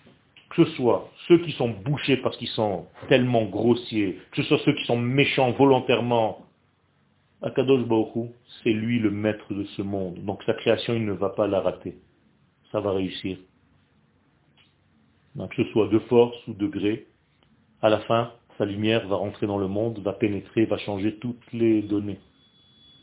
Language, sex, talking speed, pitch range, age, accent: French, male, 175 wpm, 105-140 Hz, 40-59, French